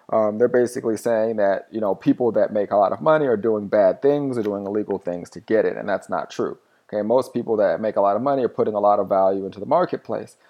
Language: English